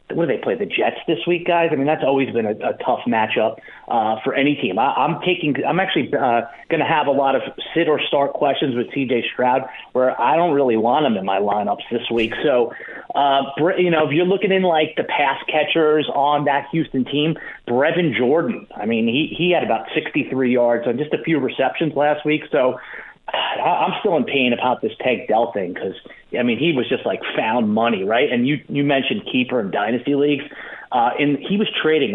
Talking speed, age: 220 wpm, 30-49